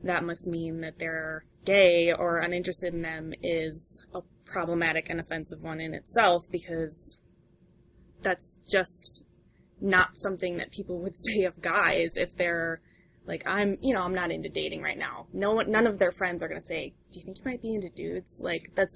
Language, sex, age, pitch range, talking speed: English, female, 20-39, 165-190 Hz, 195 wpm